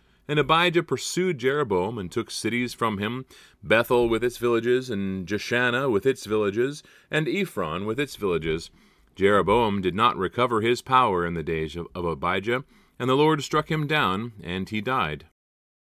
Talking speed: 165 wpm